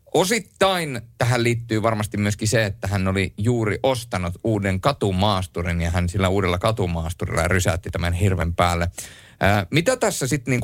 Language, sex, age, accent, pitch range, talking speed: Finnish, male, 30-49, native, 95-120 Hz, 140 wpm